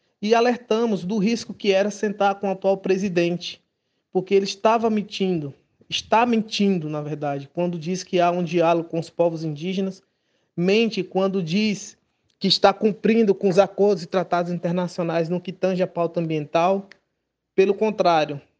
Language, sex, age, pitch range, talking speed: Portuguese, male, 20-39, 175-205 Hz, 160 wpm